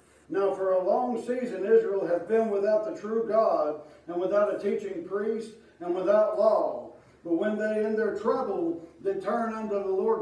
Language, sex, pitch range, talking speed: English, male, 200-235 Hz, 180 wpm